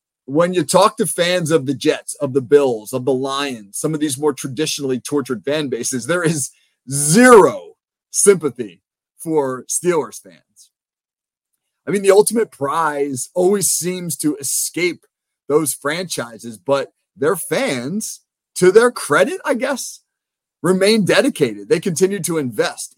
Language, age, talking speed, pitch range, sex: English, 30-49, 140 wpm, 135-180 Hz, male